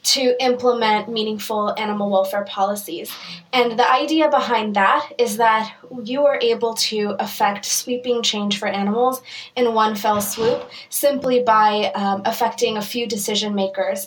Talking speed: 145 wpm